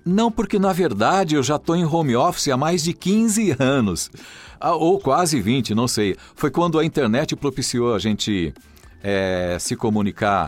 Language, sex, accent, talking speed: Portuguese, male, Brazilian, 165 wpm